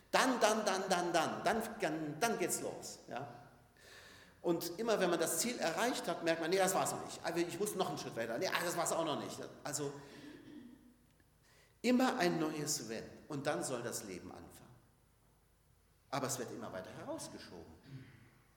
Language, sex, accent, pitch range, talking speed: German, male, German, 130-195 Hz, 175 wpm